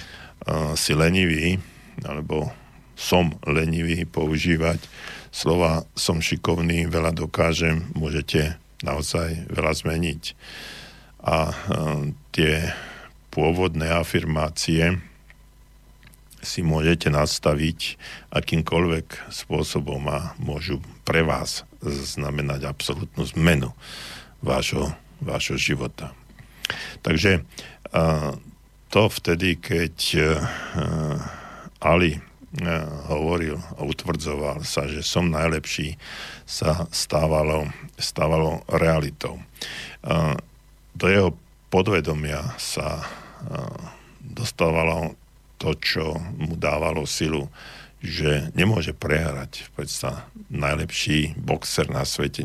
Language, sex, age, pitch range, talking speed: Slovak, male, 50-69, 75-85 Hz, 80 wpm